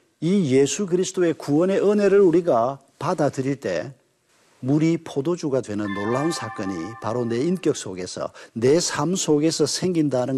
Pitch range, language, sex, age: 130-160 Hz, Korean, male, 50-69